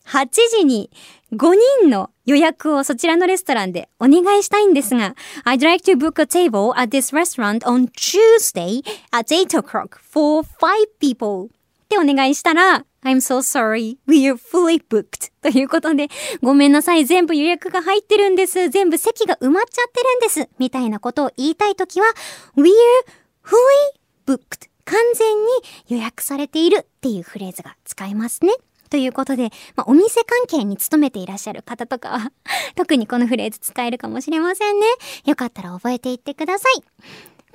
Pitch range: 240-395 Hz